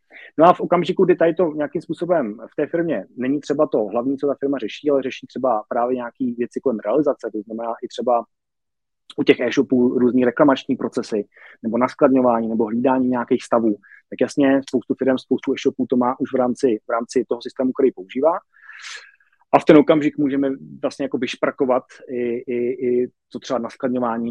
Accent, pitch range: native, 115-135 Hz